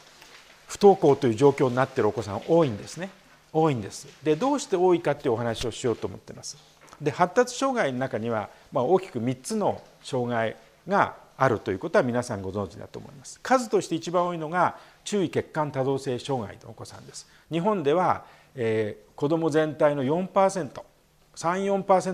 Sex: male